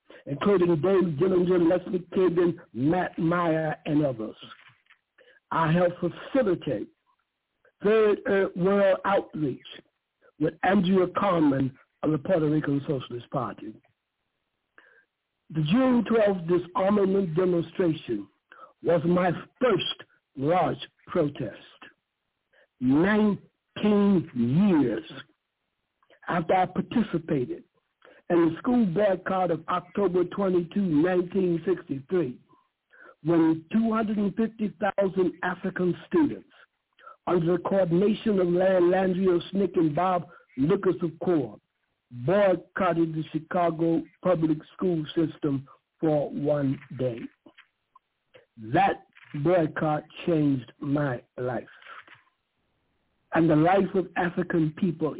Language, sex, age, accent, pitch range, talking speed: English, male, 60-79, American, 160-195 Hz, 90 wpm